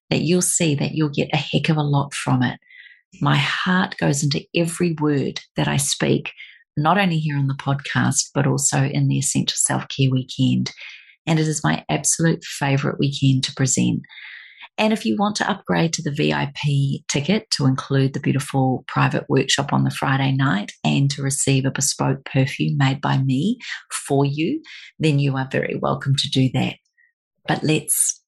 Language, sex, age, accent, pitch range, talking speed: English, female, 40-59, Australian, 135-170 Hz, 180 wpm